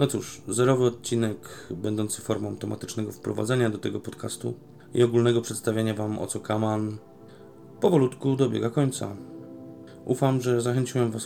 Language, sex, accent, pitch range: Polish, male, native, 105-120 Hz